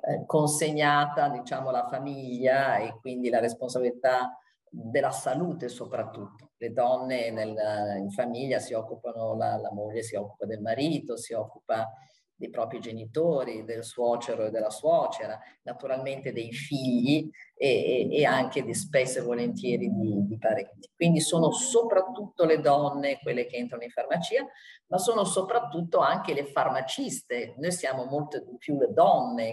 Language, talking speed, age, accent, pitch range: Italian, 140 wpm, 40-59, native, 115-160 Hz